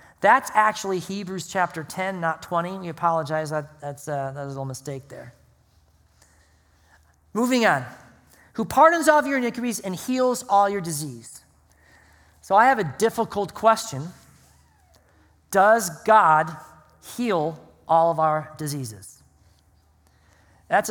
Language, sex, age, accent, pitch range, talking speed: English, male, 40-59, American, 125-205 Hz, 125 wpm